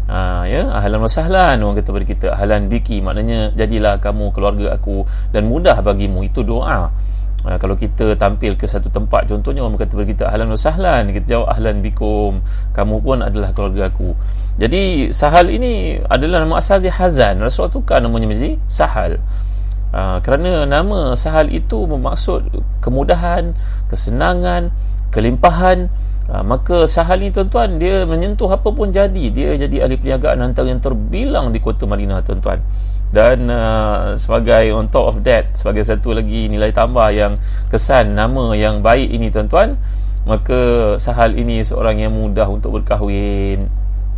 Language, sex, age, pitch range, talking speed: Malay, male, 30-49, 95-115 Hz, 150 wpm